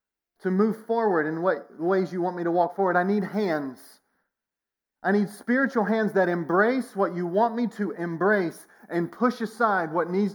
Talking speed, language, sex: 185 wpm, English, male